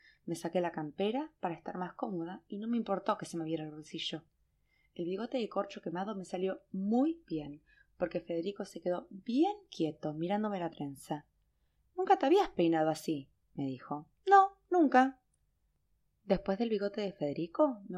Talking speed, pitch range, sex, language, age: 170 wpm, 160-230 Hz, female, English, 20-39